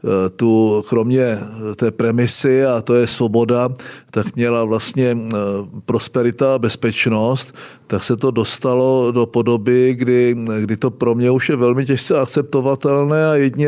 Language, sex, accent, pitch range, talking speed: Czech, male, native, 105-125 Hz, 135 wpm